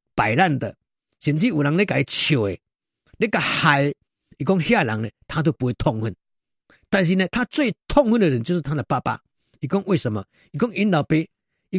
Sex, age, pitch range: male, 50-69, 125-190 Hz